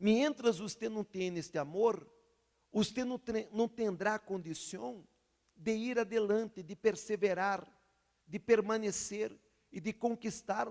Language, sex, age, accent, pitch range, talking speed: Spanish, male, 50-69, Brazilian, 160-230 Hz, 120 wpm